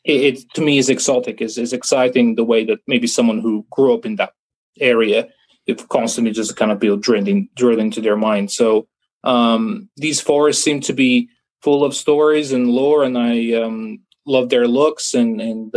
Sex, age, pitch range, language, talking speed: male, 20-39, 120-145 Hz, English, 180 wpm